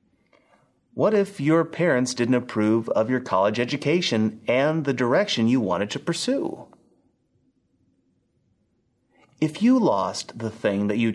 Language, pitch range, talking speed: English, 105-150 Hz, 130 wpm